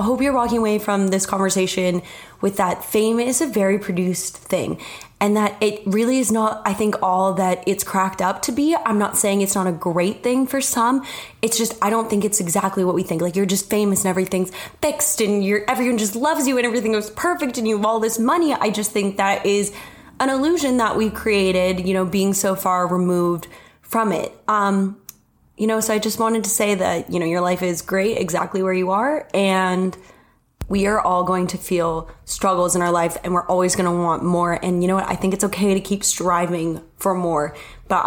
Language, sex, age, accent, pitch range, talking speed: English, female, 10-29, American, 180-215 Hz, 230 wpm